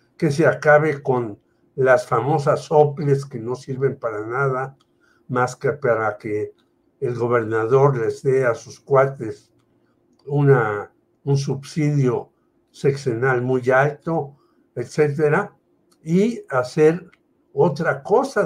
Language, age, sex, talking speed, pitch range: Spanish, 60-79, male, 110 wpm, 125-150 Hz